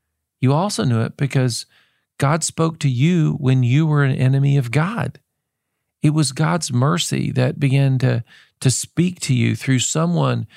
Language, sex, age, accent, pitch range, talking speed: English, male, 40-59, American, 130-160 Hz, 165 wpm